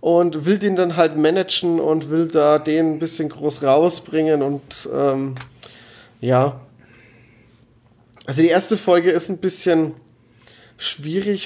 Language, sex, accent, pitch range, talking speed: German, male, German, 130-175 Hz, 130 wpm